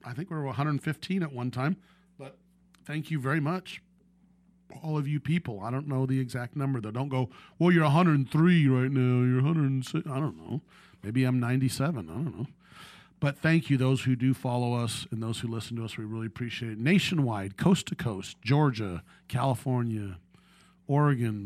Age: 40-59